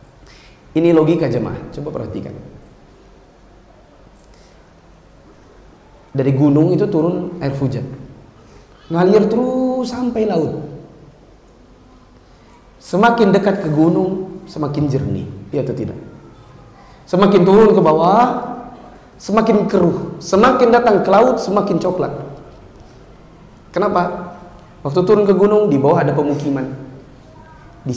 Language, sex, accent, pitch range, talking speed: Indonesian, male, native, 150-215 Hz, 100 wpm